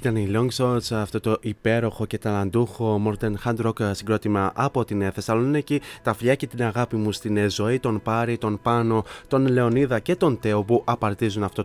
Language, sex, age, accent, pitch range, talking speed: Greek, male, 20-39, native, 110-135 Hz, 170 wpm